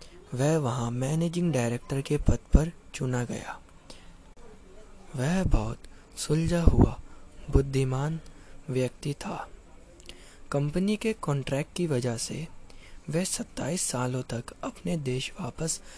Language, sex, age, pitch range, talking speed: Hindi, male, 20-39, 120-175 Hz, 110 wpm